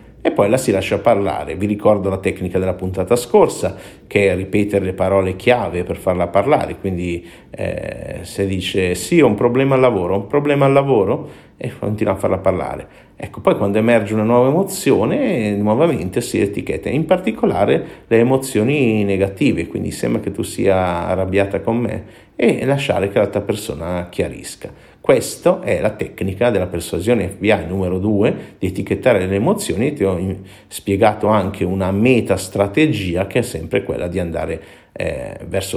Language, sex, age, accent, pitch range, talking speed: Italian, male, 50-69, native, 95-120 Hz, 165 wpm